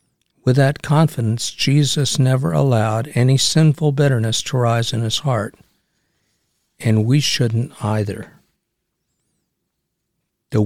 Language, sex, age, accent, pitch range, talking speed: English, male, 60-79, American, 120-145 Hz, 105 wpm